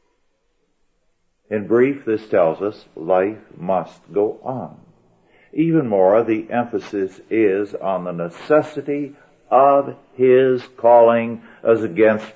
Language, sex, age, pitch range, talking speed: English, male, 60-79, 105-135 Hz, 105 wpm